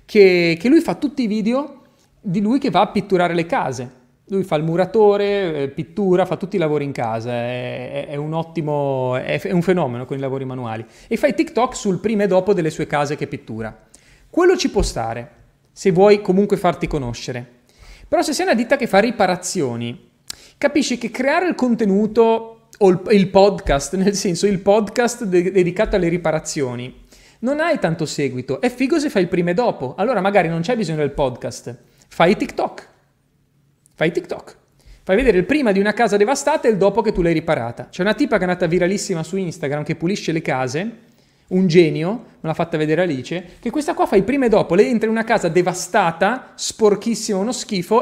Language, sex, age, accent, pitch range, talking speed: Italian, male, 30-49, native, 150-215 Hz, 195 wpm